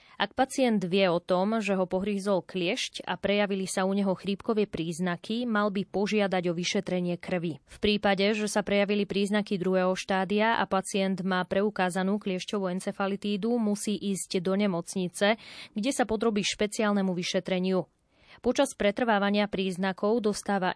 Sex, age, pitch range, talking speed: female, 20-39, 185-210 Hz, 140 wpm